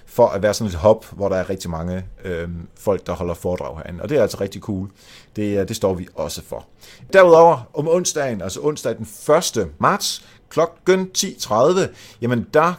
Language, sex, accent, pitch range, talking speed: Danish, male, native, 95-145 Hz, 190 wpm